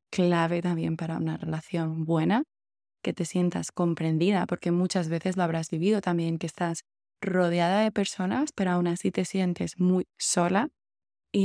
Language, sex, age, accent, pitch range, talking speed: Spanish, female, 20-39, Spanish, 165-185 Hz, 155 wpm